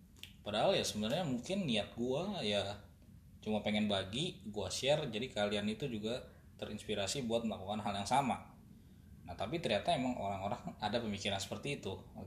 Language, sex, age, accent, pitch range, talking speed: Indonesian, male, 10-29, native, 100-115 Hz, 155 wpm